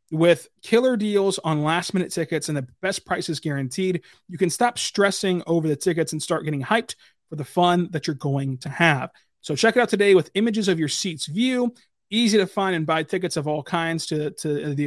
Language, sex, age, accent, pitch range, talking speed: English, male, 30-49, American, 150-195 Hz, 215 wpm